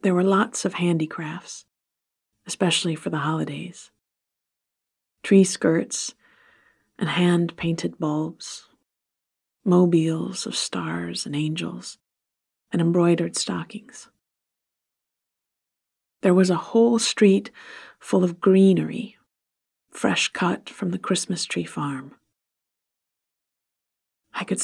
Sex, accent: female, American